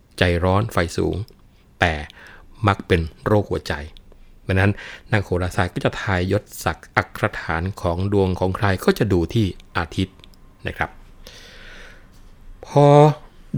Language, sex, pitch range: Thai, male, 85-105 Hz